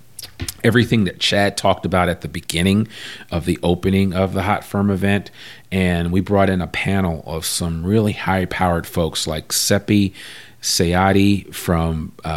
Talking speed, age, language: 150 wpm, 40-59, English